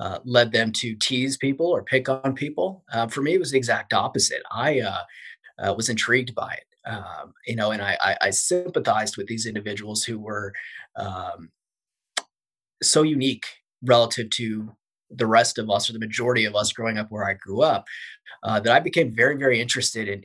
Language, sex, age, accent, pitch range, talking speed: English, male, 30-49, American, 110-130 Hz, 195 wpm